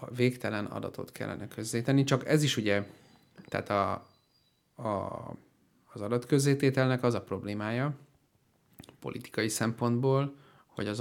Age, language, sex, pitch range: 30-49, Hungarian, male, 105-130 Hz